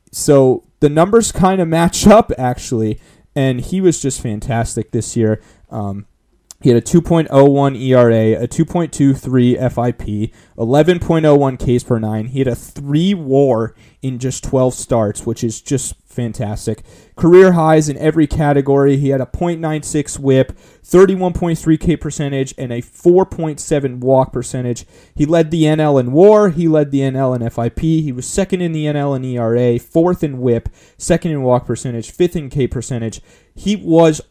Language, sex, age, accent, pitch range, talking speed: English, male, 30-49, American, 120-165 Hz, 160 wpm